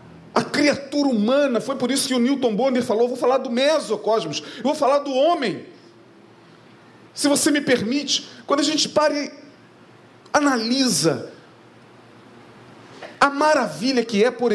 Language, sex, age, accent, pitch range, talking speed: Portuguese, male, 40-59, Brazilian, 210-285 Hz, 150 wpm